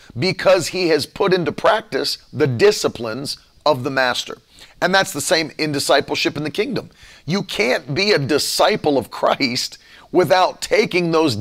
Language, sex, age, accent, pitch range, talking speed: English, male, 40-59, American, 140-195 Hz, 160 wpm